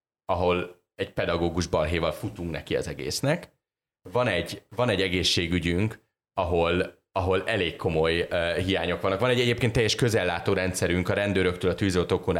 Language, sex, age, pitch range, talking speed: Hungarian, male, 30-49, 85-105 Hz, 140 wpm